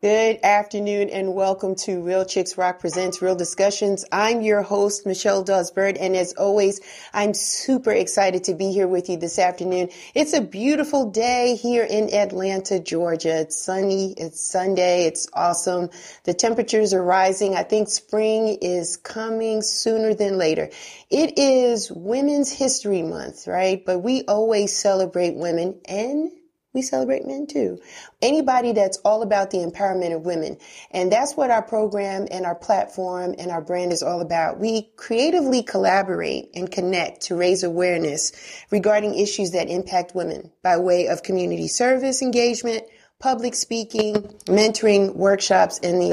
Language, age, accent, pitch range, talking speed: English, 40-59, American, 180-220 Hz, 155 wpm